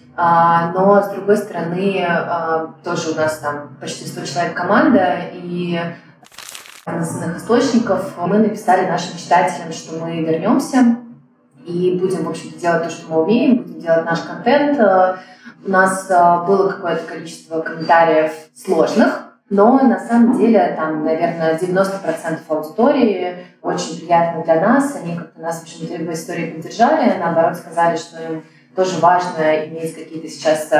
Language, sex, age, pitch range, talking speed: Russian, female, 20-39, 160-190 Hz, 140 wpm